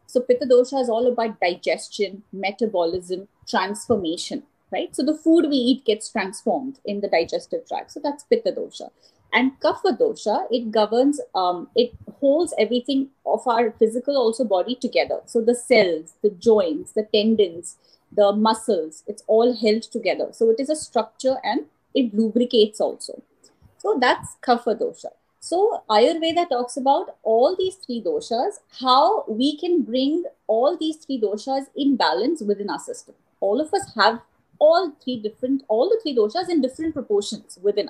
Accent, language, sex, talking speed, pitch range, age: Indian, English, female, 160 wpm, 210-290 Hz, 30-49